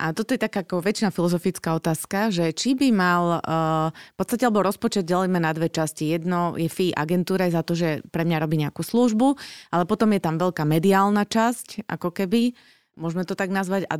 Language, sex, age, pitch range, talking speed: Slovak, female, 30-49, 160-195 Hz, 195 wpm